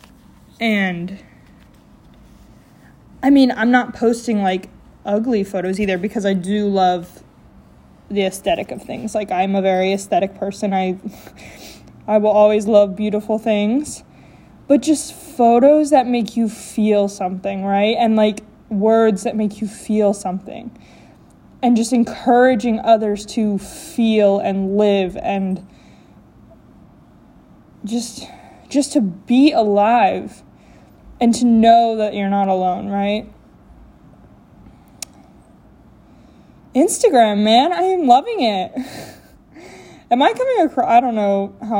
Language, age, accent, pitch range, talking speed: English, 20-39, American, 195-240 Hz, 120 wpm